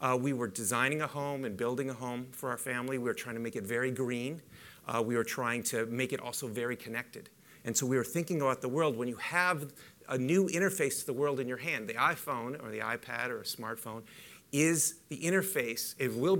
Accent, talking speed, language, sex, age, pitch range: American, 235 wpm, English, male, 40-59, 120-155 Hz